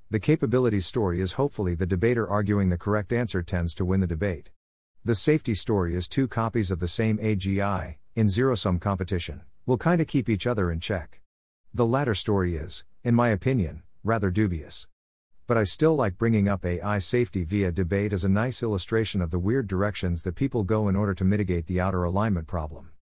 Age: 50-69